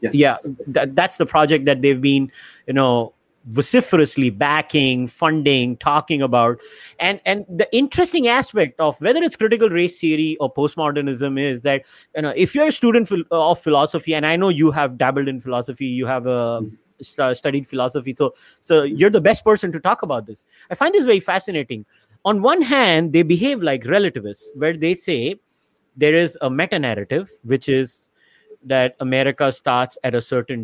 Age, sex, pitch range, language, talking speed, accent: 30-49, male, 130-180 Hz, English, 175 wpm, Indian